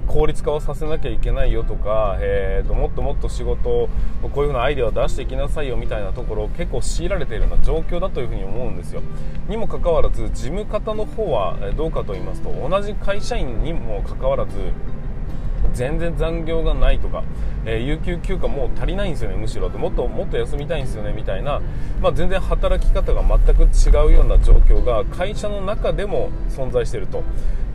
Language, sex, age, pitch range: Japanese, male, 20-39, 115-175 Hz